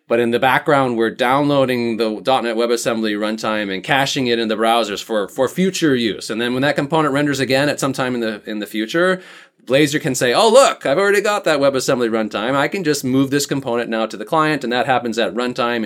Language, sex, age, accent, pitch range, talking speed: English, male, 30-49, American, 110-135 Hz, 230 wpm